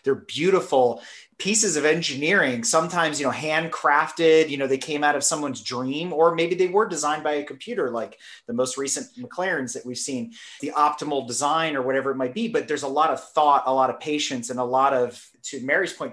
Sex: male